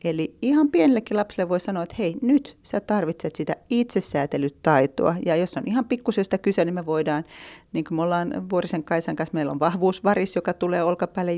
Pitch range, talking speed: 145-180 Hz, 185 wpm